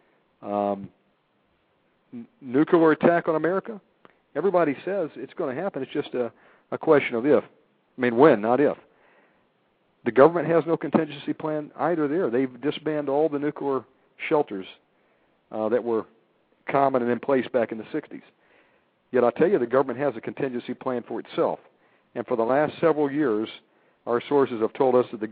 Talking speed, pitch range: 175 wpm, 115-150 Hz